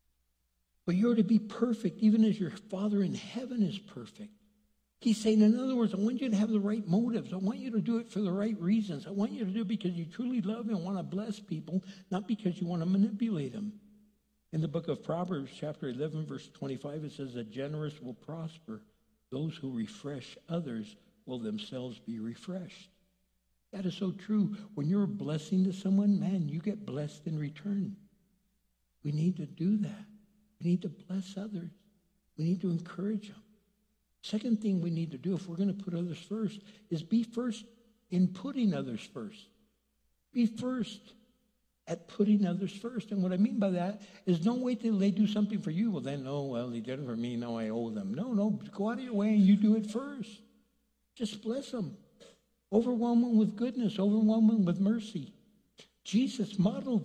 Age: 60-79